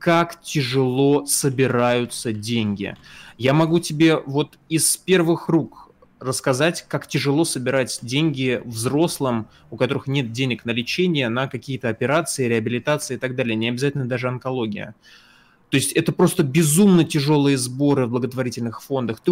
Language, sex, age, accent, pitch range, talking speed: Russian, male, 20-39, native, 125-155 Hz, 140 wpm